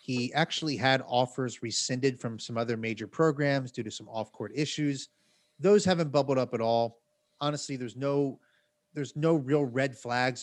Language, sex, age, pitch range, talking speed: English, male, 30-49, 125-155 Hz, 165 wpm